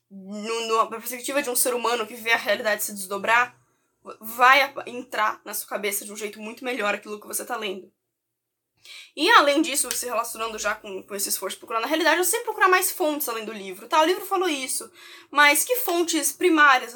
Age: 10-29